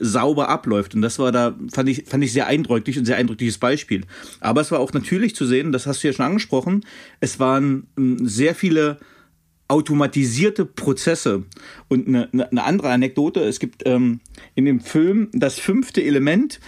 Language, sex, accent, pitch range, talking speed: German, male, German, 125-170 Hz, 175 wpm